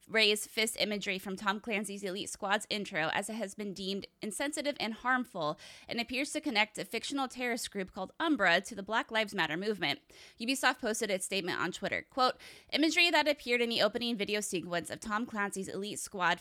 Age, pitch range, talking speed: 20-39, 195-250 Hz, 195 wpm